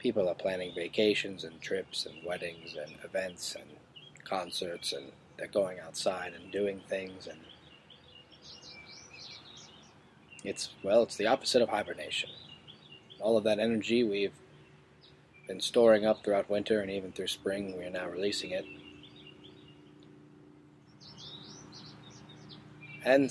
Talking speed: 120 wpm